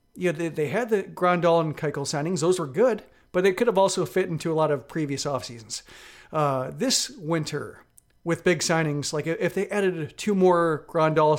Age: 40-59